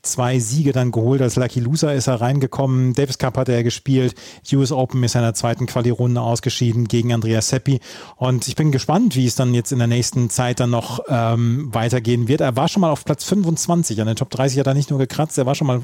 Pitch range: 120-140 Hz